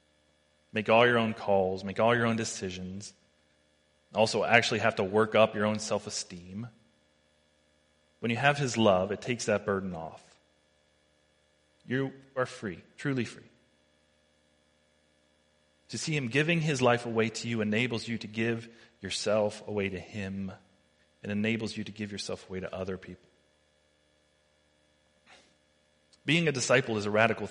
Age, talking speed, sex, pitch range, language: 30-49, 145 wpm, male, 75-110 Hz, English